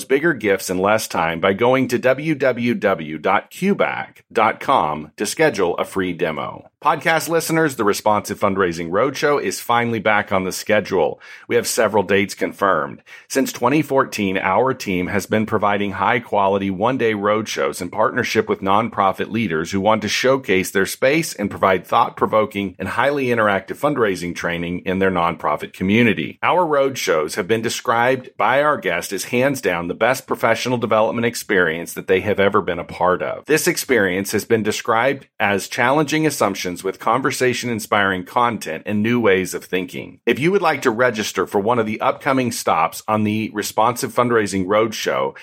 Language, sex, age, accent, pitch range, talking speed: English, male, 40-59, American, 95-125 Hz, 165 wpm